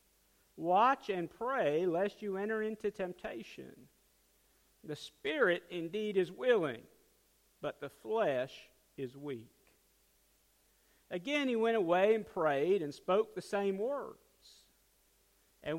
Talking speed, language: 115 wpm, English